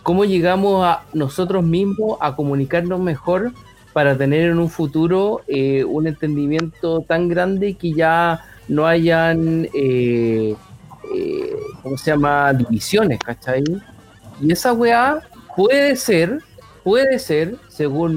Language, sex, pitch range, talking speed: Spanish, male, 145-185 Hz, 120 wpm